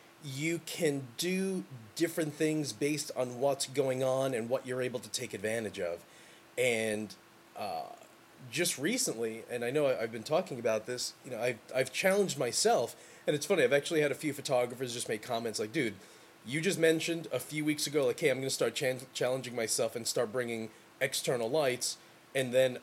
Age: 30-49